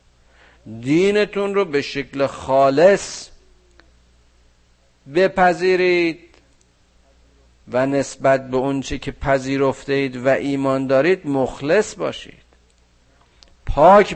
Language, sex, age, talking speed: Persian, male, 50-69, 75 wpm